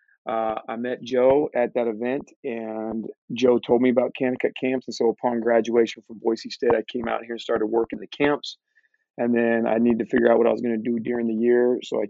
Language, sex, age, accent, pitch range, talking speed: English, male, 40-59, American, 115-130 Hz, 240 wpm